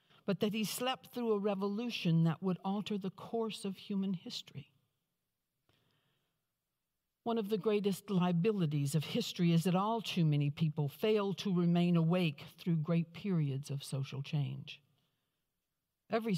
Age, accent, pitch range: 60-79, American, 150-190 Hz